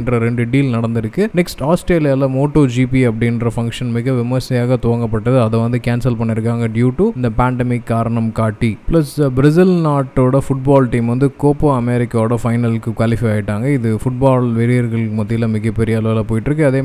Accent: native